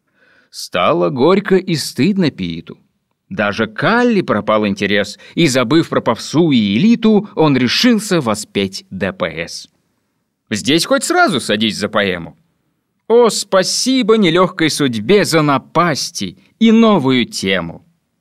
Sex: male